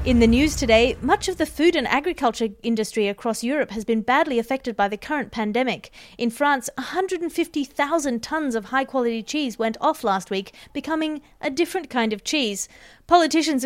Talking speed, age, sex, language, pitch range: 170 wpm, 30-49, female, English, 220-285 Hz